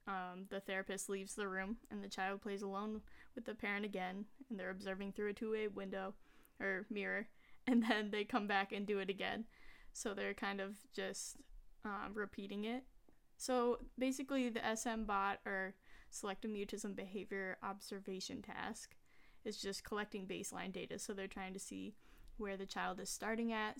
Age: 10-29